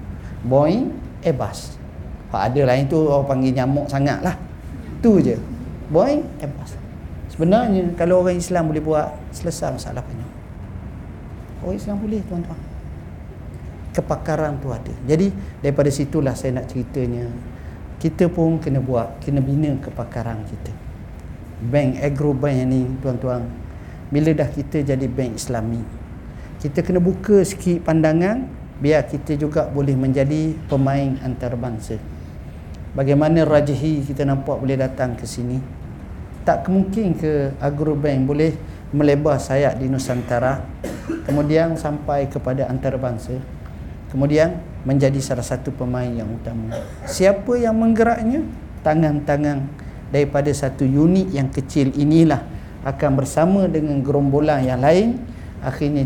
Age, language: 40-59, Malay